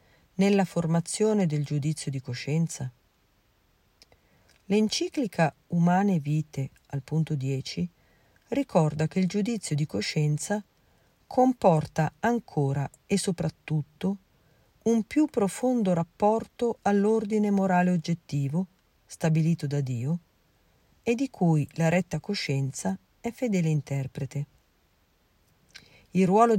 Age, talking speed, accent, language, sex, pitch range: 40-59, 95 wpm, native, Italian, female, 145-200 Hz